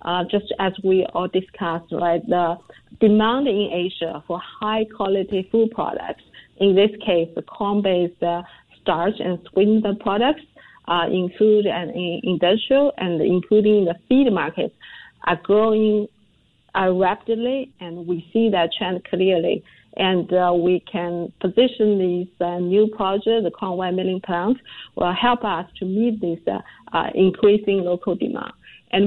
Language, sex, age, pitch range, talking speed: English, female, 50-69, 175-215 Hz, 145 wpm